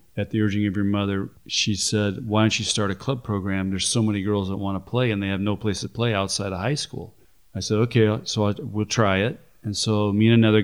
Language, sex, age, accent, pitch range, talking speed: English, male, 40-59, American, 100-115 Hz, 260 wpm